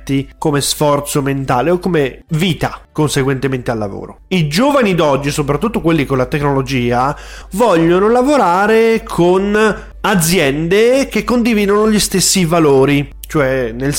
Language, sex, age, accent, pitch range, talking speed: Italian, male, 20-39, native, 145-190 Hz, 120 wpm